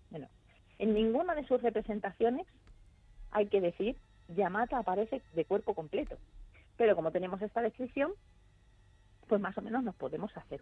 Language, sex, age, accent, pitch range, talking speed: Spanish, female, 40-59, Spanish, 185-250 Hz, 145 wpm